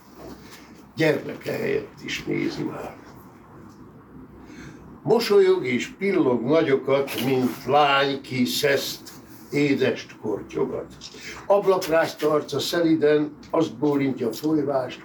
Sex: male